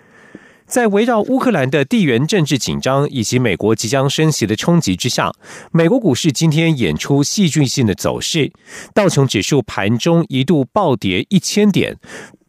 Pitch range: 125-170 Hz